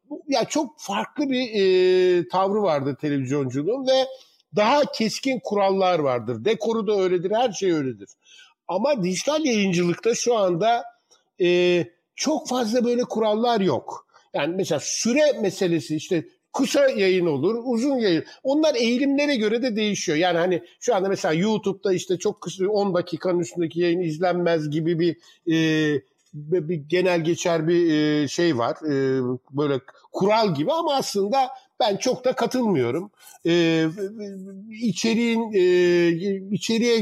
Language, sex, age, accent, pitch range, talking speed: Turkish, male, 60-79, native, 170-225 Hz, 125 wpm